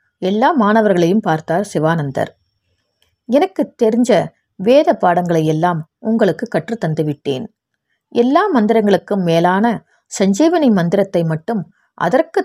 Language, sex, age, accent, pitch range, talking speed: Tamil, female, 30-49, native, 165-235 Hz, 85 wpm